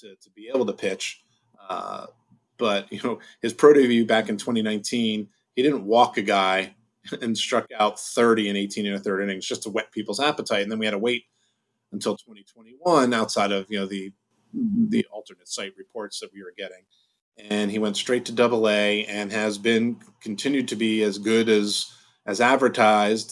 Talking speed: 190 wpm